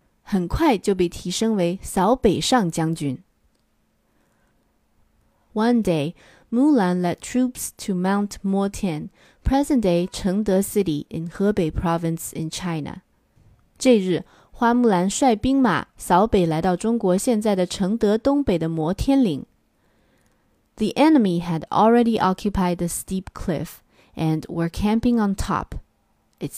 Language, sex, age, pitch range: Chinese, female, 20-39, 170-225 Hz